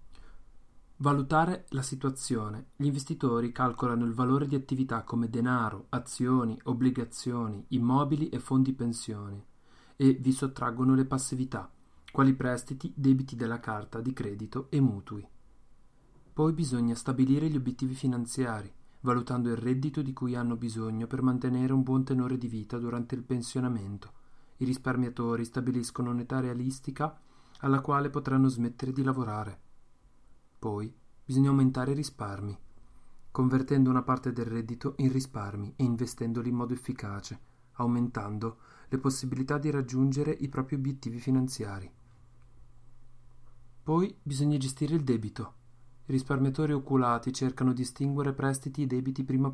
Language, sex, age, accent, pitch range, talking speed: Italian, male, 30-49, native, 120-135 Hz, 130 wpm